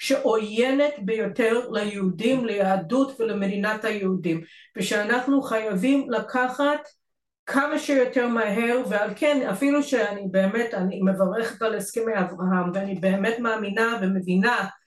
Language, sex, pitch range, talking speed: Hebrew, female, 200-250 Hz, 105 wpm